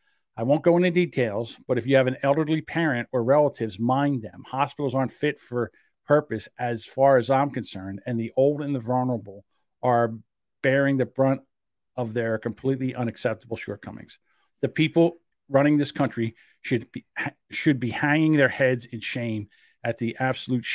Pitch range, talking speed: 115-135 Hz, 170 wpm